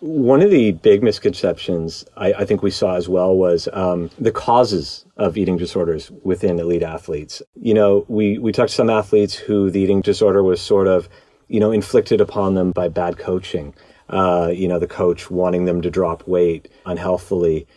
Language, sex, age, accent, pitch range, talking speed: English, male, 40-59, American, 90-105 Hz, 190 wpm